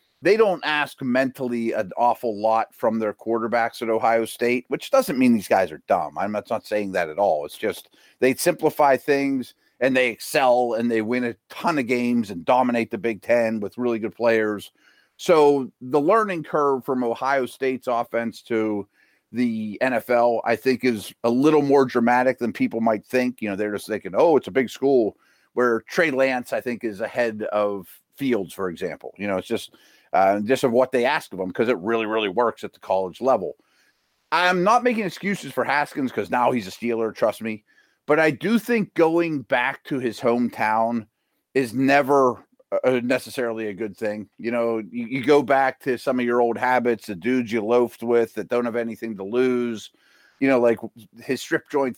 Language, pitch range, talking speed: English, 110-130 Hz, 200 wpm